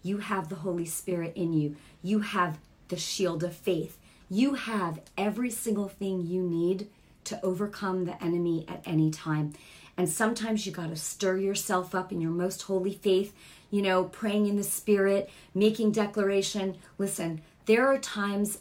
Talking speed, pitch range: 170 wpm, 175-215 Hz